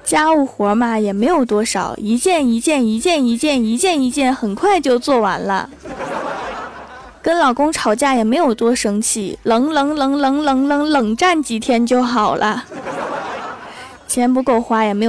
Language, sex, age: Chinese, female, 20-39